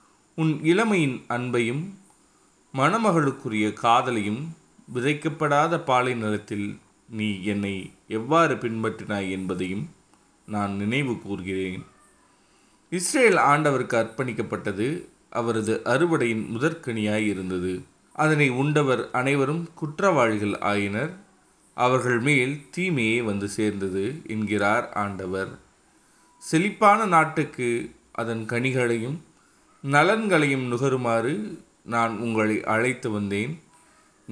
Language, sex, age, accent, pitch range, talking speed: Tamil, male, 30-49, native, 105-145 Hz, 75 wpm